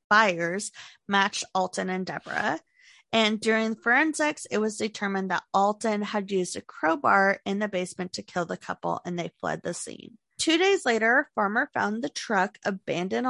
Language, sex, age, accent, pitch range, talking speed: English, female, 20-39, American, 180-235 Hz, 165 wpm